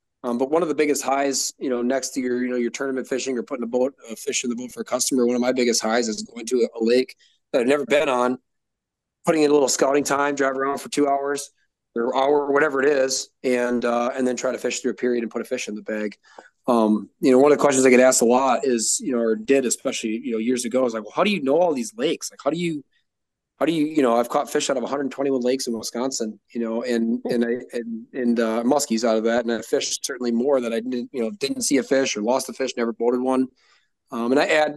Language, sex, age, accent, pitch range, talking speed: English, male, 20-39, American, 115-135 Hz, 285 wpm